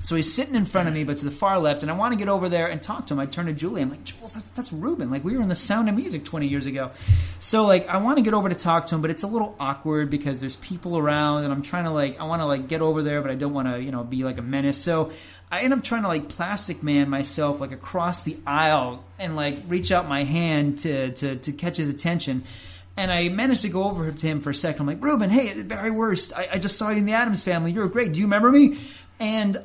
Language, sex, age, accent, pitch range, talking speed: English, male, 30-49, American, 140-185 Hz, 300 wpm